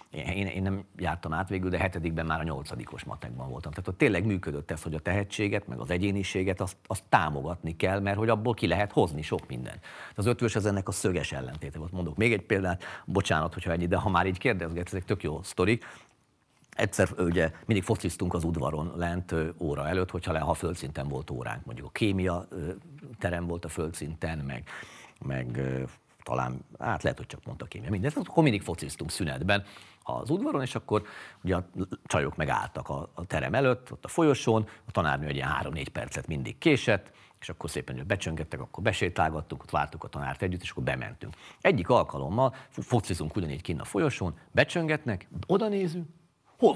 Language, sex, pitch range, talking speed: Hungarian, male, 80-110 Hz, 185 wpm